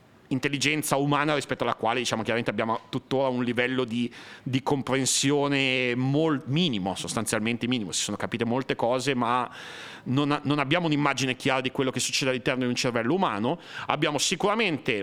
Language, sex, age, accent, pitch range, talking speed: Italian, male, 40-59, native, 125-165 Hz, 155 wpm